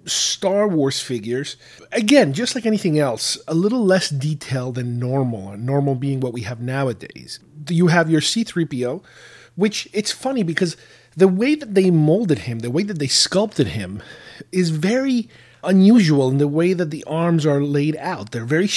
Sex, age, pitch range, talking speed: male, 30-49, 145-195 Hz, 175 wpm